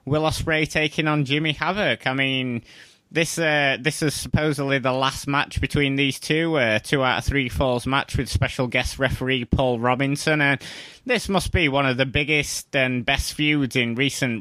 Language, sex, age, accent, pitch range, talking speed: English, male, 20-39, British, 125-150 Hz, 185 wpm